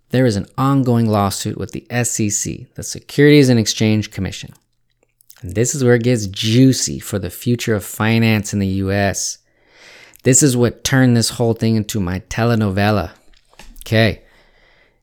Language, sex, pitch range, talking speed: English, male, 100-125 Hz, 155 wpm